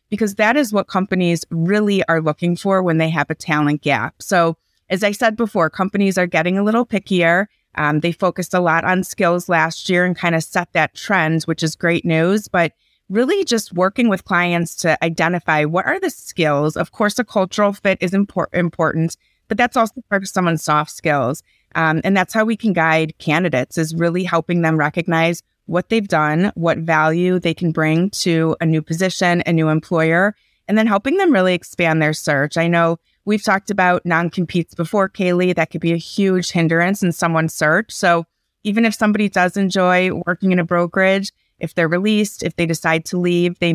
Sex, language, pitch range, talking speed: female, English, 160-195 Hz, 200 wpm